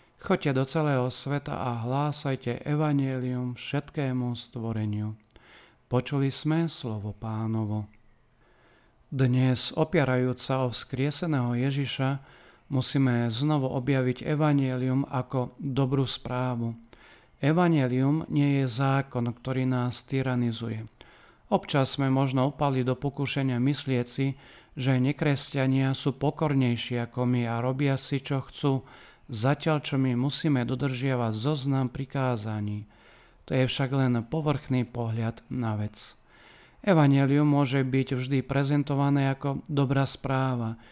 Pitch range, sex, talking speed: 125-140 Hz, male, 105 wpm